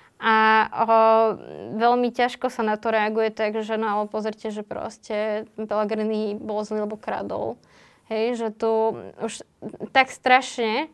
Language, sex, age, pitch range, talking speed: Slovak, female, 20-39, 220-240 Hz, 130 wpm